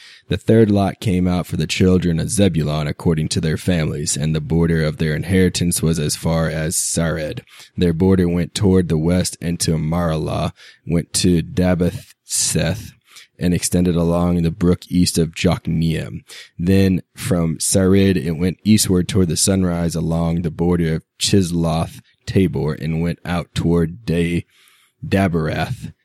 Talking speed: 155 wpm